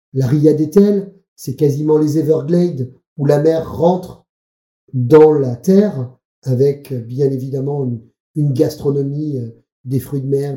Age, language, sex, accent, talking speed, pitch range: 50-69, French, male, French, 135 wpm, 130-165 Hz